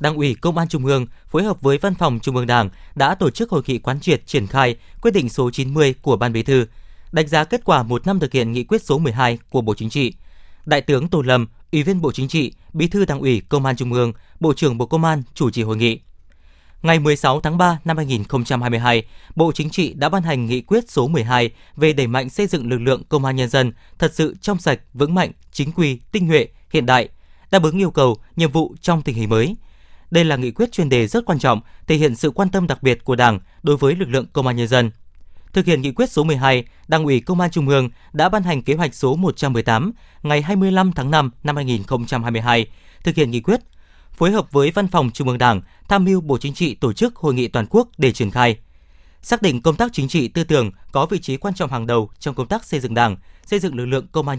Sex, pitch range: male, 125-165 Hz